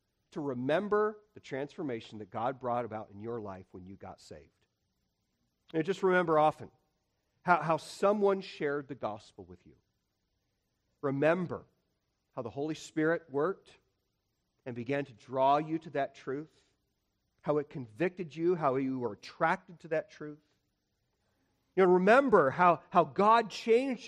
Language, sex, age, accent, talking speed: English, male, 40-59, American, 145 wpm